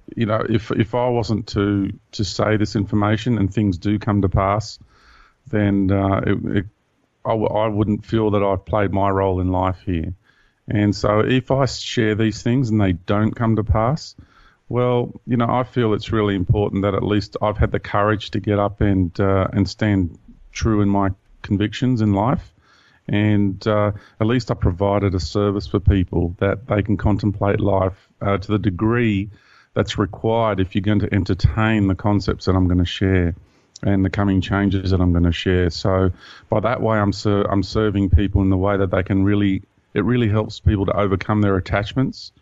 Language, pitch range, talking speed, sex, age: English, 95-110 Hz, 200 wpm, male, 40-59